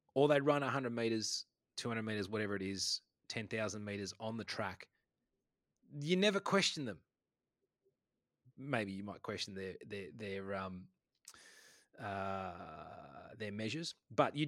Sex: male